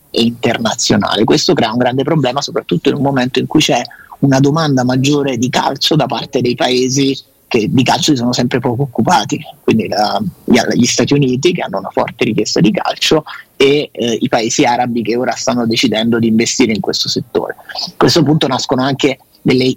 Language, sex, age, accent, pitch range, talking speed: Italian, male, 30-49, native, 120-140 Hz, 195 wpm